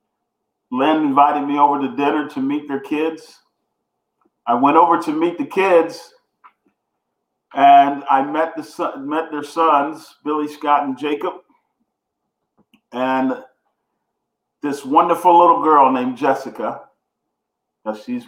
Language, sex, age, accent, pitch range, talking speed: English, male, 40-59, American, 135-155 Hz, 120 wpm